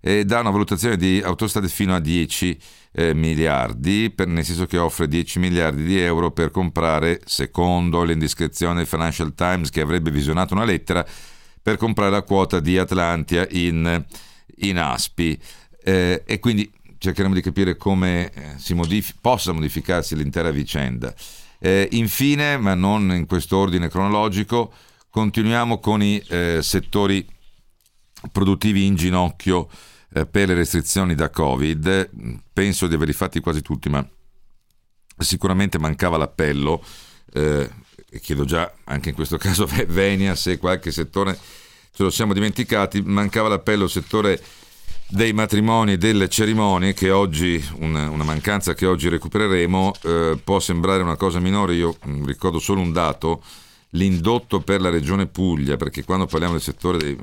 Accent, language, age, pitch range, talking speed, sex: native, Italian, 50-69, 80-100 Hz, 145 wpm, male